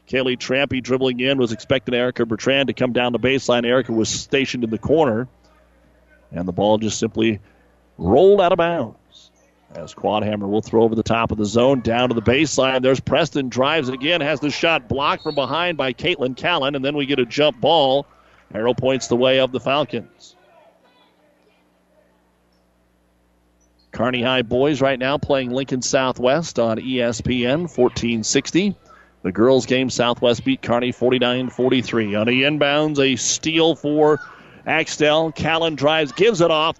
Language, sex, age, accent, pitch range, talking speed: English, male, 40-59, American, 110-140 Hz, 165 wpm